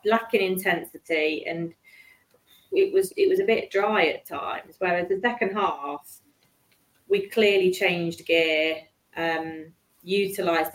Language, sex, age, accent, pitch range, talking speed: English, female, 30-49, British, 165-210 Hz, 125 wpm